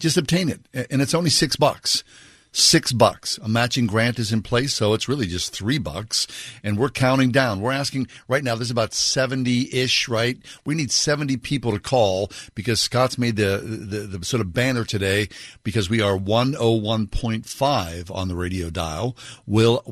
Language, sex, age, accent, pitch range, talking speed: English, male, 60-79, American, 105-125 Hz, 180 wpm